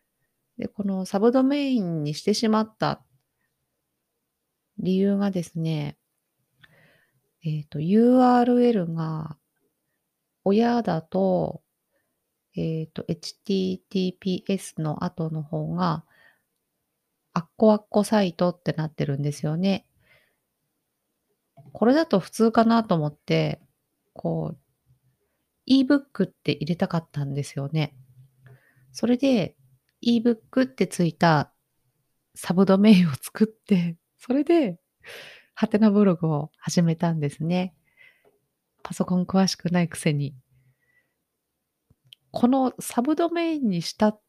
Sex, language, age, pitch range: female, Japanese, 30-49, 150-205 Hz